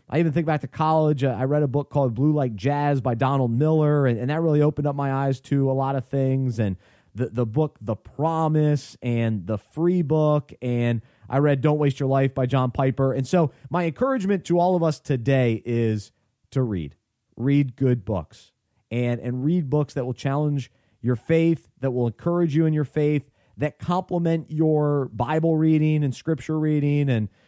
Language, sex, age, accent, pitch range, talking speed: English, male, 30-49, American, 125-155 Hz, 200 wpm